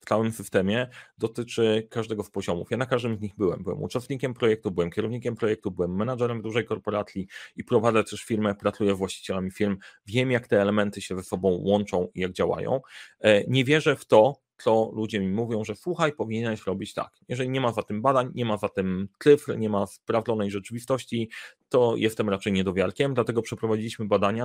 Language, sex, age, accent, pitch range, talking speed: Polish, male, 30-49, native, 100-120 Hz, 190 wpm